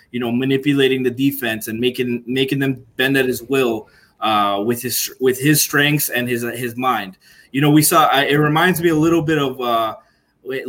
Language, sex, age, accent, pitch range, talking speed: English, male, 20-39, American, 130-160 Hz, 195 wpm